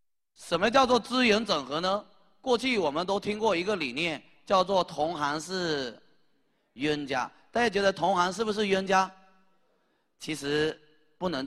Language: Chinese